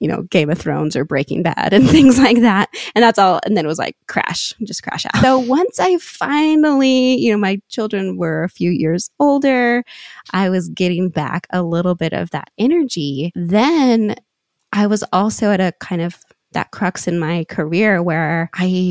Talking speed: 195 wpm